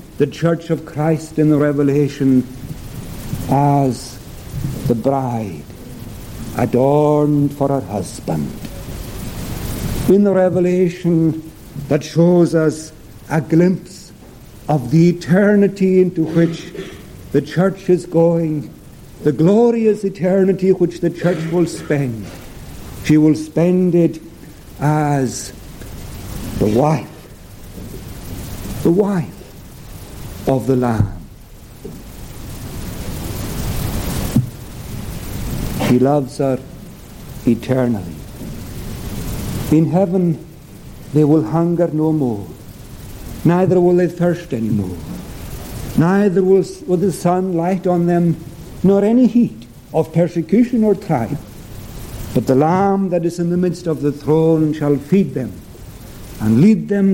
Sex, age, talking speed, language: male, 60-79, 105 wpm, English